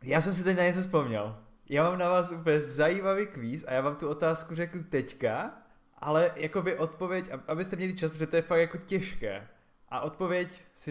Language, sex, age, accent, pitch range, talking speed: Czech, male, 20-39, native, 135-170 Hz, 205 wpm